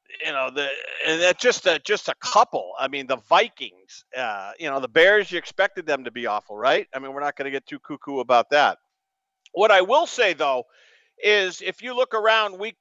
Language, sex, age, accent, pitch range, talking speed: English, male, 50-69, American, 160-245 Hz, 220 wpm